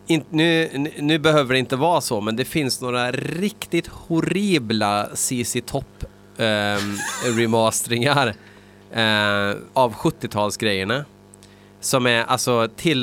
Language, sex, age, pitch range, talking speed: Swedish, male, 30-49, 100-130 Hz, 105 wpm